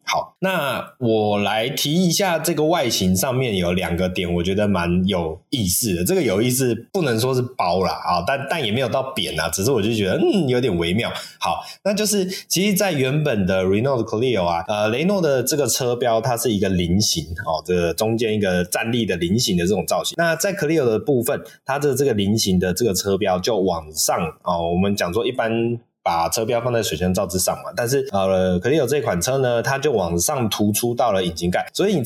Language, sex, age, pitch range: Chinese, male, 20-39, 90-130 Hz